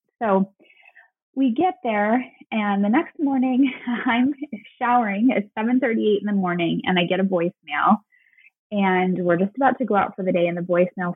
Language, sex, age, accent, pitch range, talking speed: English, female, 20-39, American, 195-265 Hz, 175 wpm